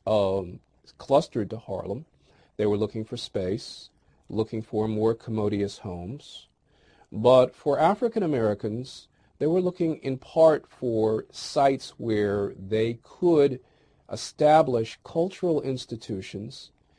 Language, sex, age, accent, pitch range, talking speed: English, male, 40-59, American, 100-125 Hz, 110 wpm